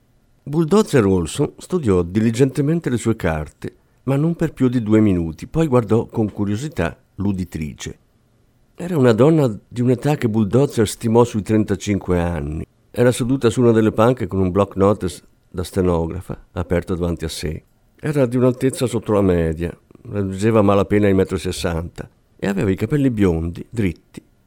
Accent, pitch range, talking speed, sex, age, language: native, 95-120 Hz, 155 wpm, male, 50-69, Italian